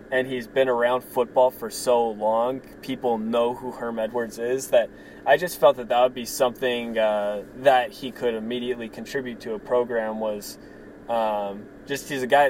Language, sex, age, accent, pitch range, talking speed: English, male, 20-39, American, 110-130 Hz, 185 wpm